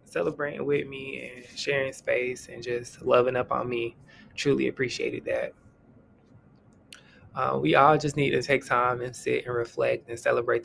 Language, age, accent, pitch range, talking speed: English, 20-39, American, 120-155 Hz, 165 wpm